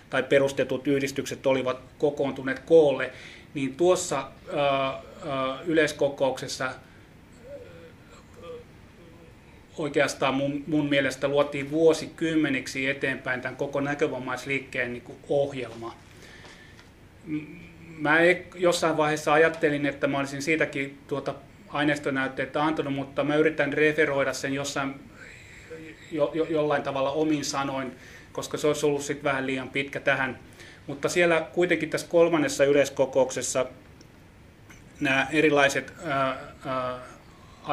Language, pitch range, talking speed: Finnish, 130-150 Hz, 95 wpm